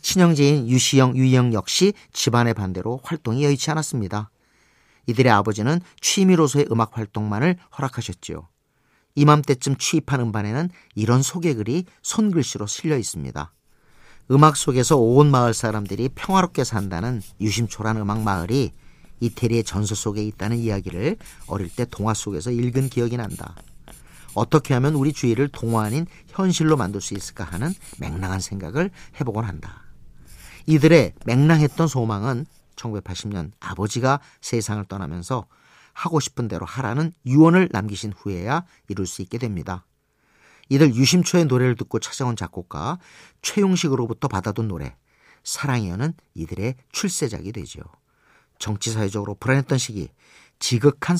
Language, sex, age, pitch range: Korean, male, 40-59, 105-145 Hz